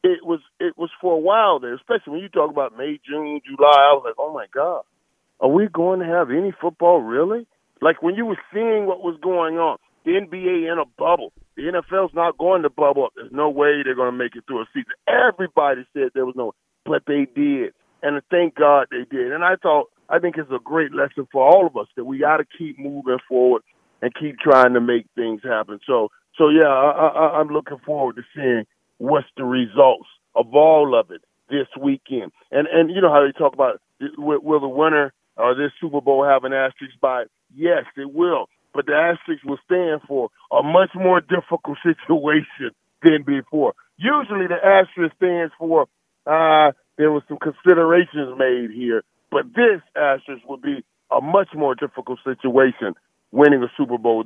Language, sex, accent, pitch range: English, male, American, 140-175 Hz